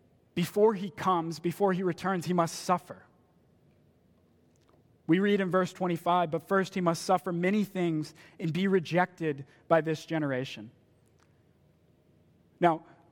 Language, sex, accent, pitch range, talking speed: English, male, American, 170-210 Hz, 130 wpm